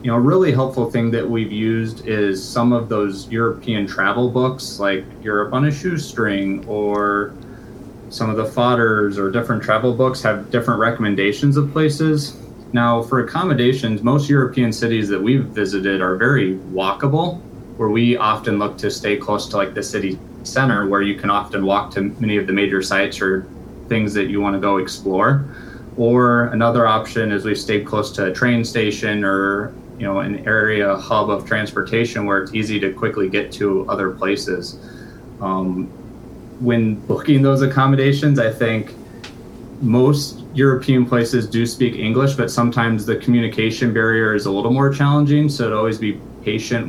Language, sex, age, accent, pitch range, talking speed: English, male, 30-49, American, 105-125 Hz, 170 wpm